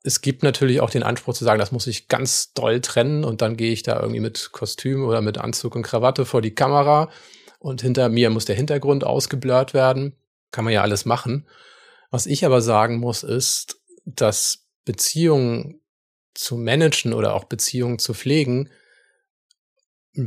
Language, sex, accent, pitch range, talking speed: German, male, German, 110-135 Hz, 175 wpm